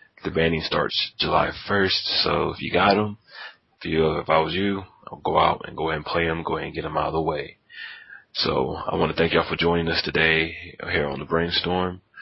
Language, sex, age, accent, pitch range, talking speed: English, male, 30-49, American, 80-90 Hz, 235 wpm